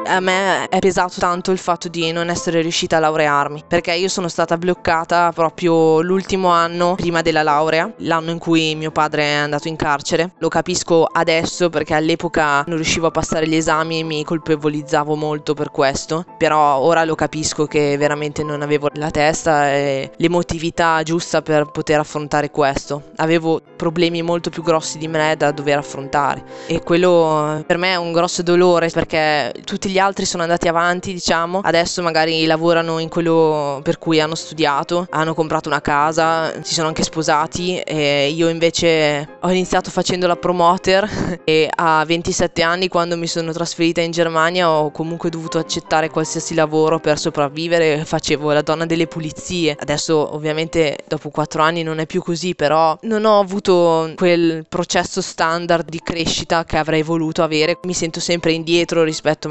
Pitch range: 155-170 Hz